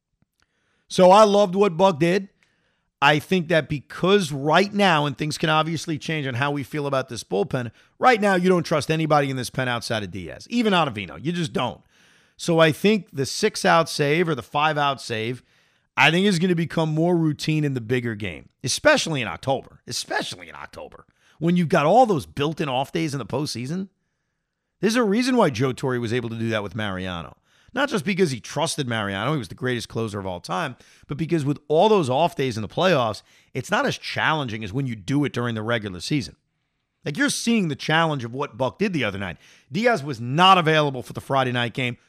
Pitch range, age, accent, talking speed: 125-195 Hz, 40-59, American, 220 wpm